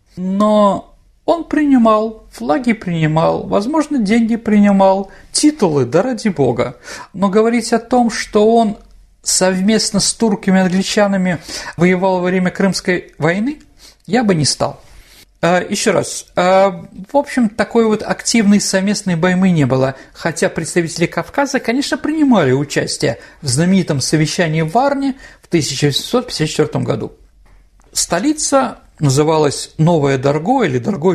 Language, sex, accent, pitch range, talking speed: Russian, male, native, 145-215 Hz, 120 wpm